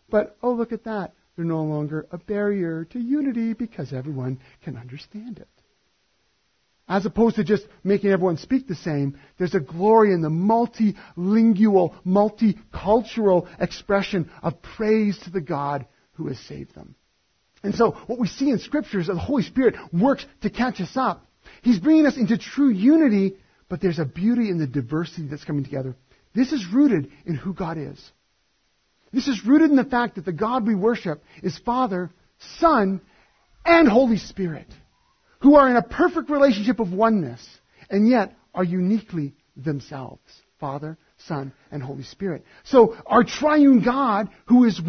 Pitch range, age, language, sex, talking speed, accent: 160-230 Hz, 40-59, English, male, 165 wpm, American